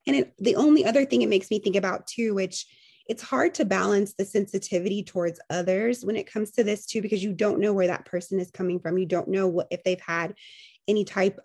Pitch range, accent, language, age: 185-235 Hz, American, English, 20-39